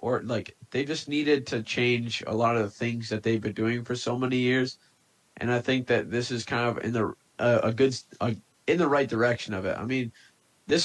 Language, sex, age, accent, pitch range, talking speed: English, male, 20-39, American, 120-160 Hz, 240 wpm